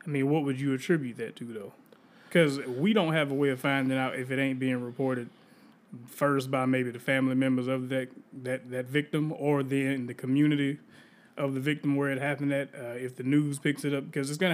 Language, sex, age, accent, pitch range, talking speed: English, male, 20-39, American, 125-140 Hz, 225 wpm